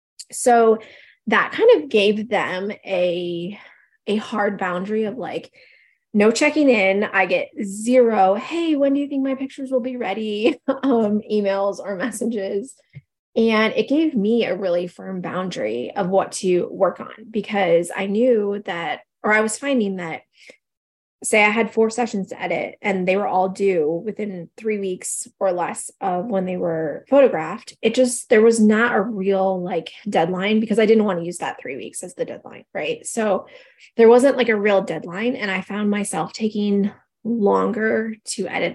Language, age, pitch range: English, 20-39, 190-235 Hz